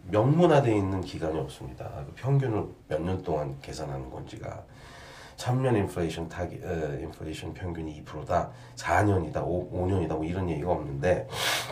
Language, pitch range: Korean, 85-125 Hz